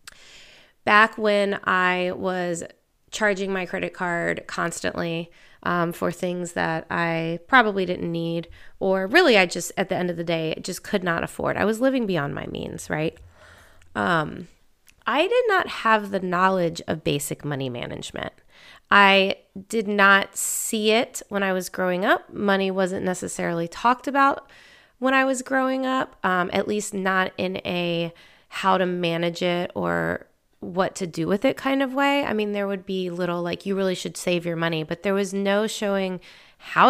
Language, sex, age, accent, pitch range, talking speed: English, female, 30-49, American, 170-200 Hz, 175 wpm